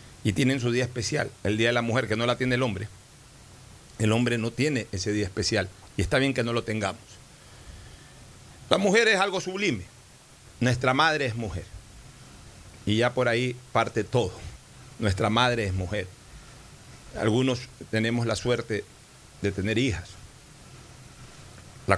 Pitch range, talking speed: 105-130 Hz, 155 wpm